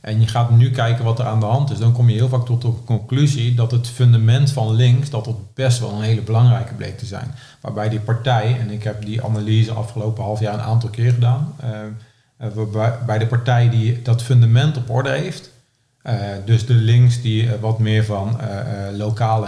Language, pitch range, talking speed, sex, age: Dutch, 110-125 Hz, 215 wpm, male, 40-59